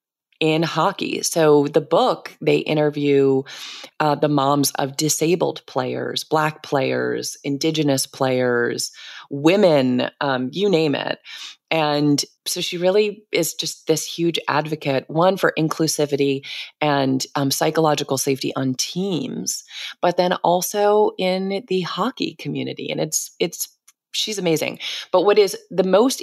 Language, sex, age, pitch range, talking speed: English, female, 30-49, 135-165 Hz, 130 wpm